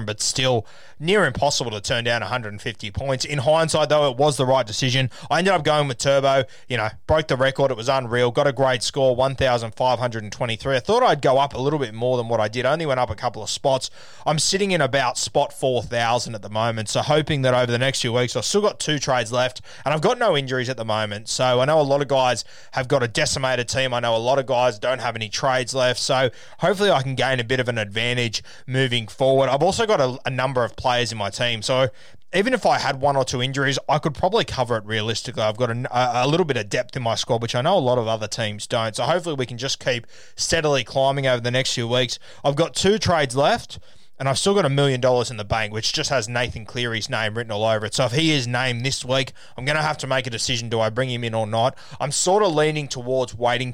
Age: 20-39